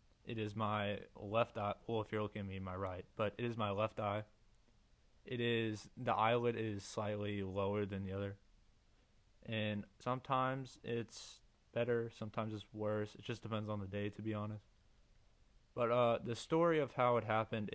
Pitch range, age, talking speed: 105-115 Hz, 20-39, 180 wpm